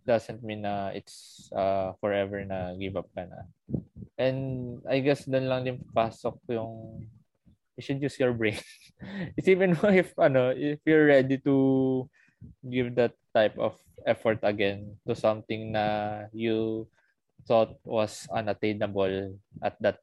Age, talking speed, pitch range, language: 20-39, 140 wpm, 100-120 Hz, Filipino